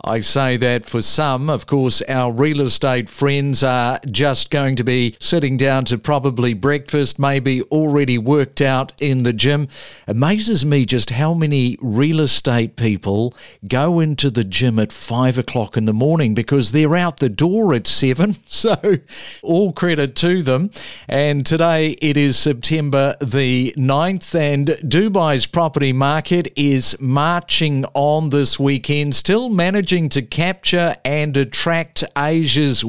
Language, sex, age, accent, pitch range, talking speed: English, male, 50-69, Australian, 130-160 Hz, 150 wpm